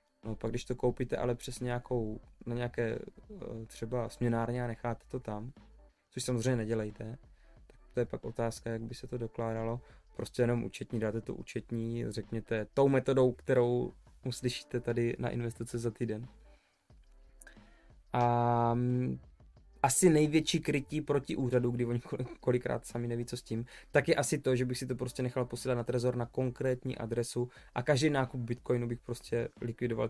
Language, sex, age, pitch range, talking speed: Czech, male, 20-39, 115-130 Hz, 160 wpm